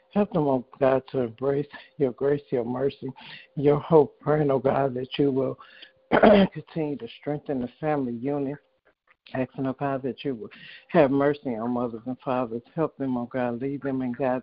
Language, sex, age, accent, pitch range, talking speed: English, male, 60-79, American, 125-140 Hz, 195 wpm